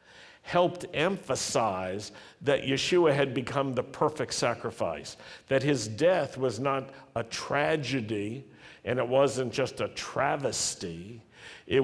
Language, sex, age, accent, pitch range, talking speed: English, male, 60-79, American, 115-160 Hz, 115 wpm